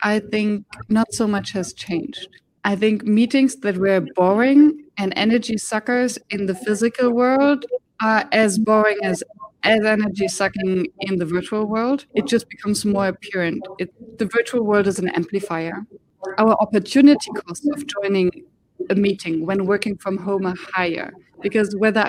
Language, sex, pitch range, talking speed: English, female, 195-240 Hz, 155 wpm